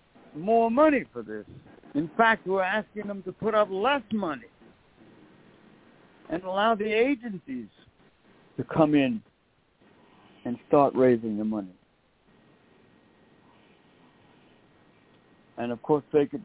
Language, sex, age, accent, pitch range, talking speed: English, male, 60-79, American, 125-160 Hz, 115 wpm